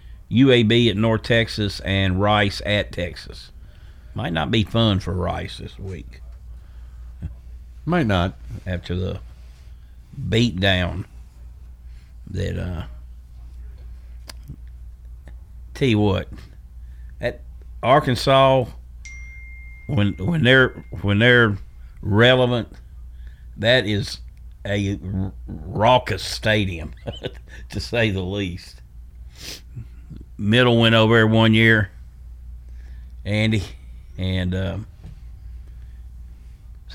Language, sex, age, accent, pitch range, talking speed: English, male, 50-69, American, 65-105 Hz, 90 wpm